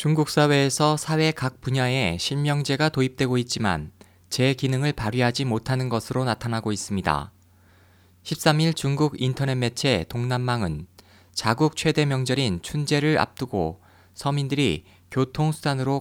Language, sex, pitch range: Korean, male, 100-145 Hz